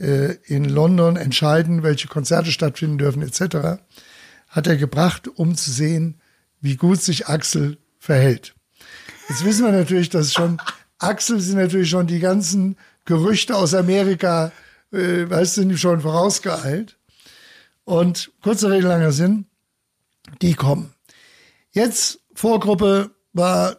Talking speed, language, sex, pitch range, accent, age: 130 wpm, German, male, 160-190 Hz, German, 60-79